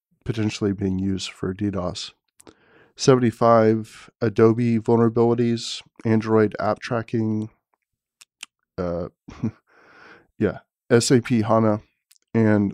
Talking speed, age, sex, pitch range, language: 75 wpm, 40-59, male, 100-120 Hz, English